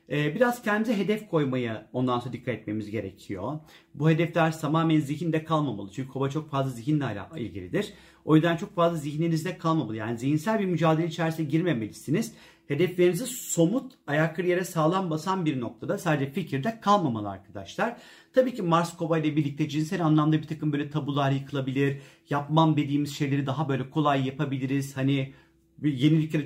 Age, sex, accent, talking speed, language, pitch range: 40-59, male, native, 150 wpm, Turkish, 135-165 Hz